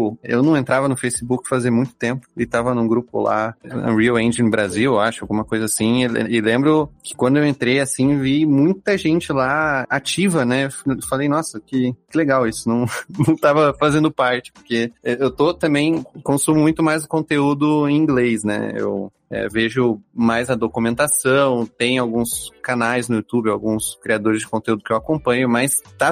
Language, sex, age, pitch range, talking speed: Portuguese, male, 20-39, 115-150 Hz, 170 wpm